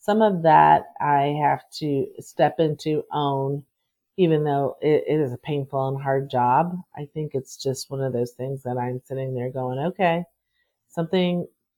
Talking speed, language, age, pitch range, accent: 175 wpm, English, 40-59, 135-165 Hz, American